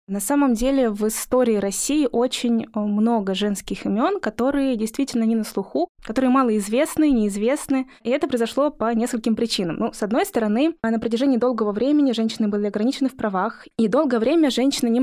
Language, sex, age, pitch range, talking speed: Russian, female, 20-39, 215-260 Hz, 170 wpm